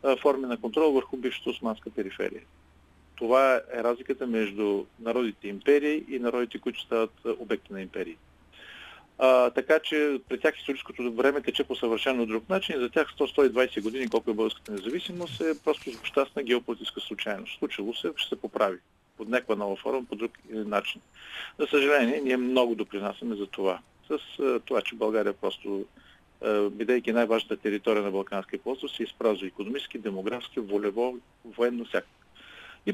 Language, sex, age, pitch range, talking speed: Bulgarian, male, 40-59, 110-135 Hz, 155 wpm